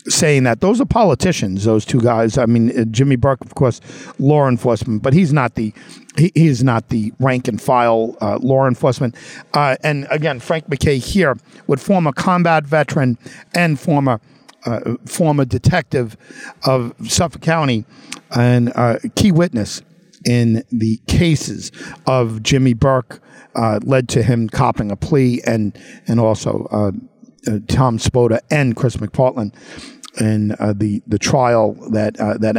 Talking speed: 155 wpm